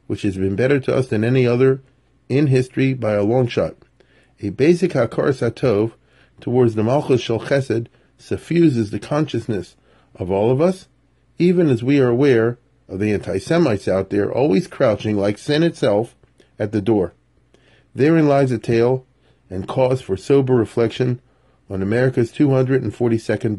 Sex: male